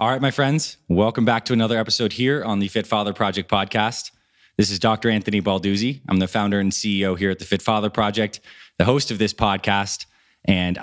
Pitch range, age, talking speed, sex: 95-115 Hz, 20-39, 210 wpm, male